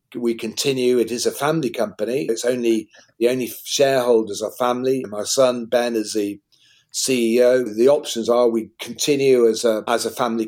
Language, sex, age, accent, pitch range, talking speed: English, male, 50-69, British, 115-130 Hz, 170 wpm